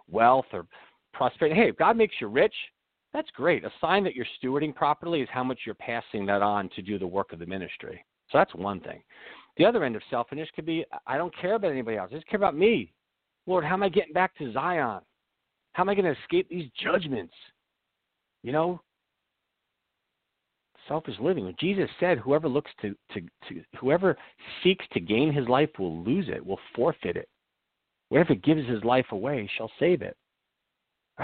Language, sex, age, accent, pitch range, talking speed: English, male, 50-69, American, 115-185 Hz, 195 wpm